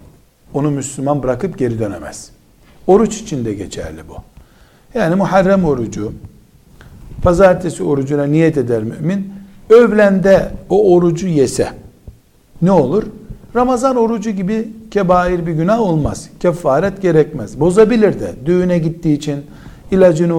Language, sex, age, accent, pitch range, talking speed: Turkish, male, 60-79, native, 140-195 Hz, 110 wpm